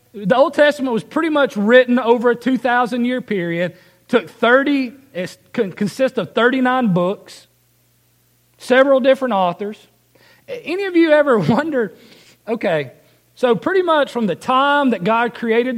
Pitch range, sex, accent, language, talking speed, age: 150-250 Hz, male, American, English, 135 wpm, 40-59